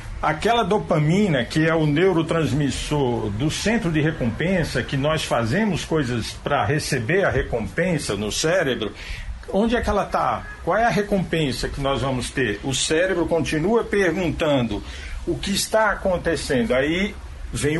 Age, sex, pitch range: 50-69, male, 135-195 Hz